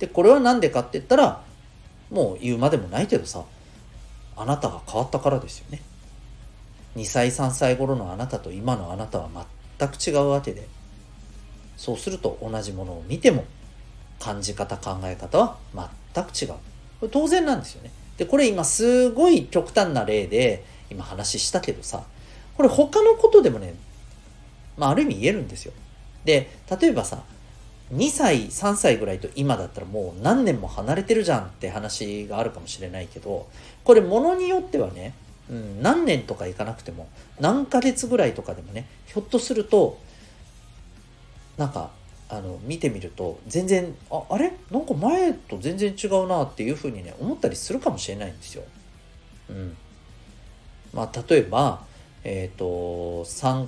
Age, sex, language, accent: 40-59, male, Japanese, native